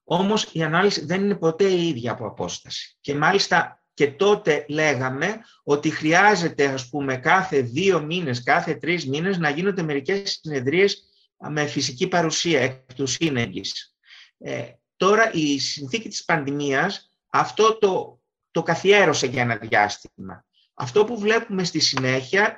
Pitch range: 140-195 Hz